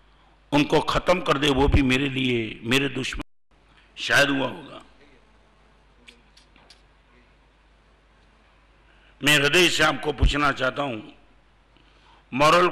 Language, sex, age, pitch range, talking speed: Hindi, male, 50-69, 130-150 Hz, 100 wpm